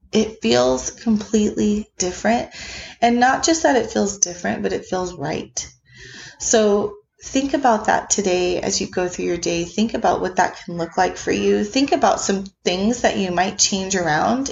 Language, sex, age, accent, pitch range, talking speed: English, female, 20-39, American, 195-235 Hz, 180 wpm